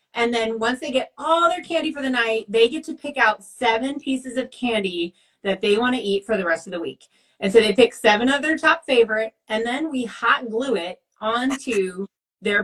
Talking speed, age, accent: 225 wpm, 30-49, American